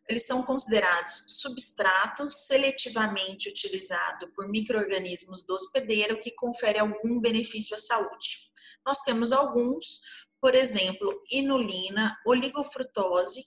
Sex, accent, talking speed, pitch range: female, Brazilian, 105 wpm, 200-260 Hz